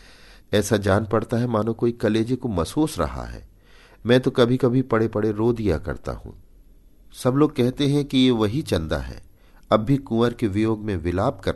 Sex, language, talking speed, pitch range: male, Hindi, 195 wpm, 80-110 Hz